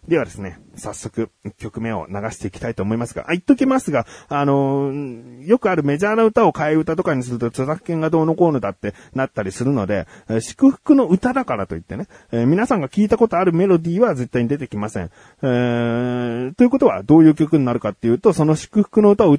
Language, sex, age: Japanese, male, 40-59